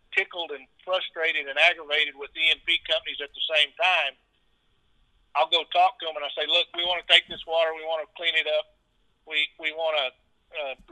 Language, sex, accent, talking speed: English, male, American, 210 wpm